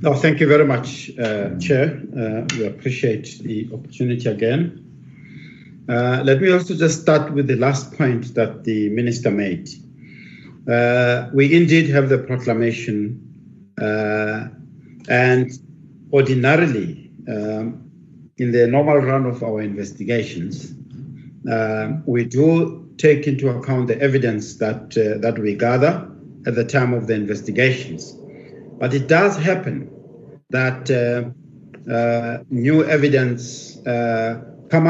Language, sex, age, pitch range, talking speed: English, male, 60-79, 120-145 Hz, 125 wpm